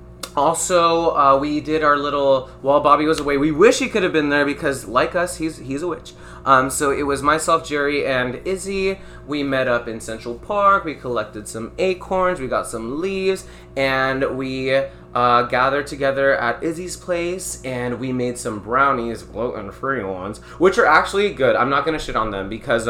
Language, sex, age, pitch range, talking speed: English, male, 20-39, 120-155 Hz, 190 wpm